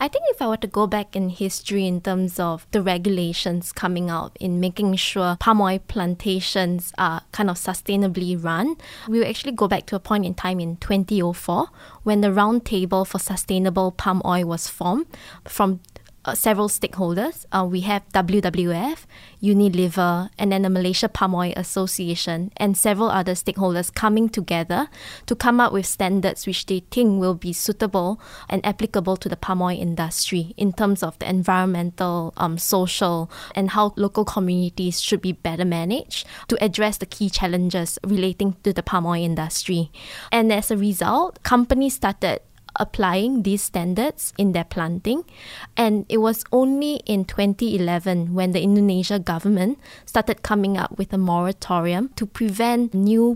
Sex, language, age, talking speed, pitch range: female, English, 20-39, 165 wpm, 180-215 Hz